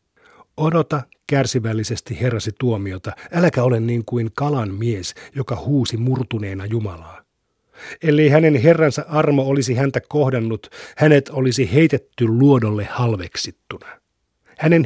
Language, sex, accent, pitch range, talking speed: Finnish, male, native, 105-140 Hz, 110 wpm